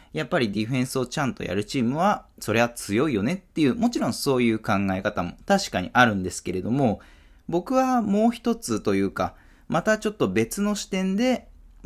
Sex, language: male, Japanese